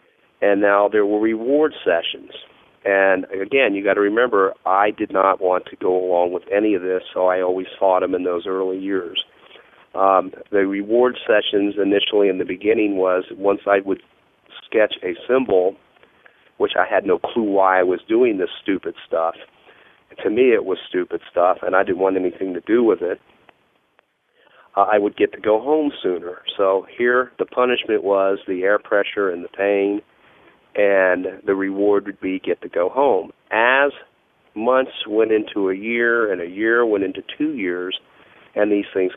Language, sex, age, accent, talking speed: English, male, 40-59, American, 180 wpm